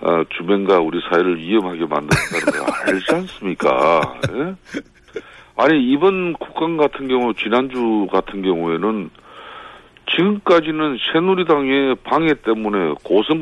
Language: Korean